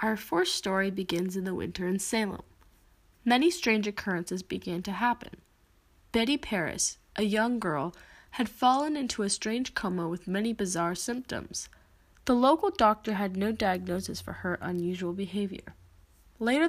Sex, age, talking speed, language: female, 20-39, 145 wpm, English